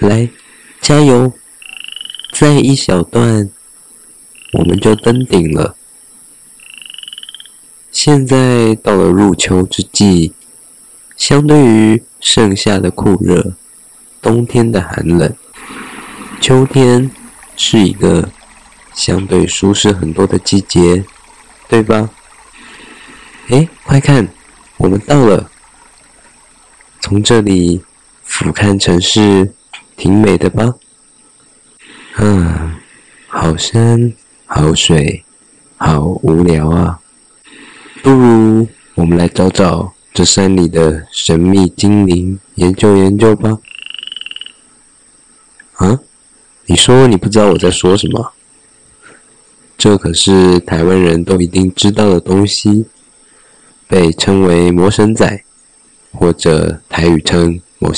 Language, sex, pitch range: Chinese, male, 90-110 Hz